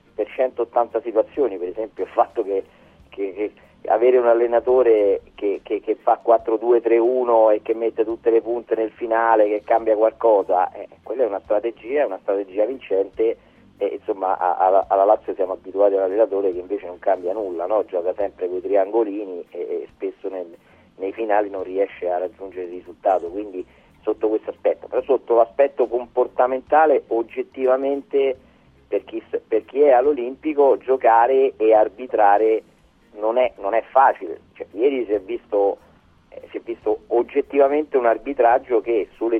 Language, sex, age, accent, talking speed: Italian, male, 30-49, native, 155 wpm